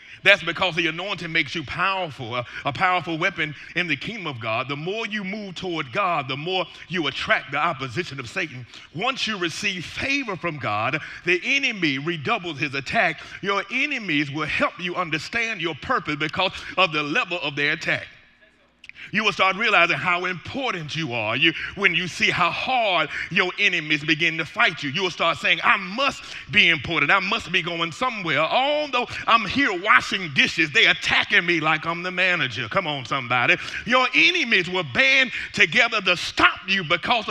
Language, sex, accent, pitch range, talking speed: English, male, American, 165-255 Hz, 180 wpm